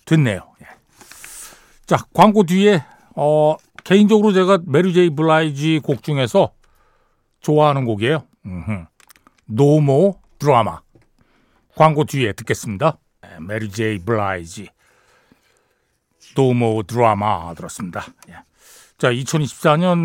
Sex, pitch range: male, 130-200 Hz